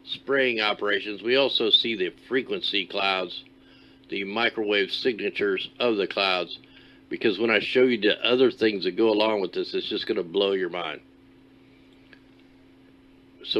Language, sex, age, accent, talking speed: English, male, 50-69, American, 155 wpm